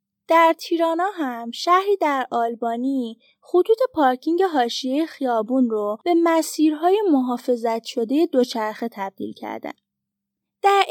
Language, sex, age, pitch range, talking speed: Persian, female, 10-29, 235-320 Hz, 105 wpm